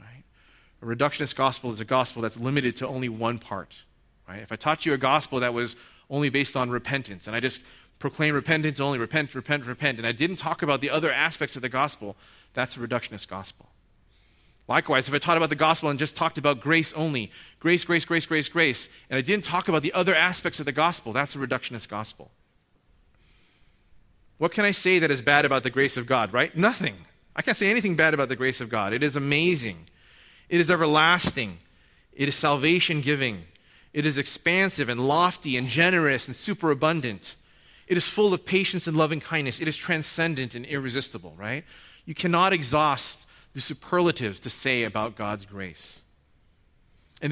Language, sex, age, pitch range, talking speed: English, male, 30-49, 125-165 Hz, 190 wpm